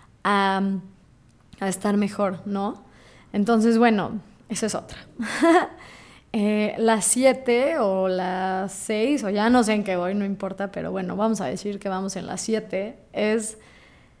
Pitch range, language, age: 205-245 Hz, Spanish, 20-39